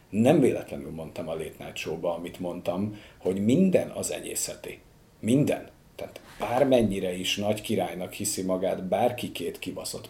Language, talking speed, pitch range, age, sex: Hungarian, 130 wpm, 95-115 Hz, 50-69, male